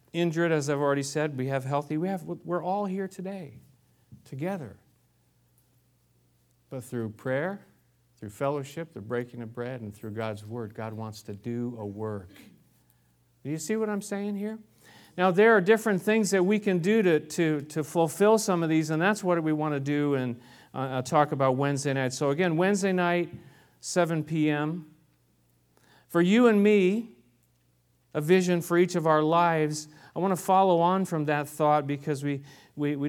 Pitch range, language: 120-170 Hz, English